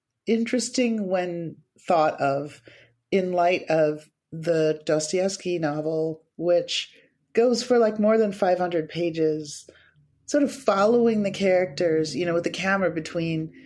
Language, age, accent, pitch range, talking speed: English, 40-59, American, 160-225 Hz, 125 wpm